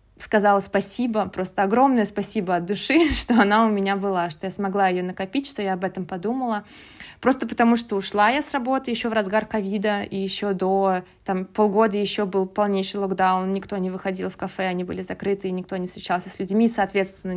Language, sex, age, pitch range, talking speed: Russian, female, 20-39, 185-230 Hz, 195 wpm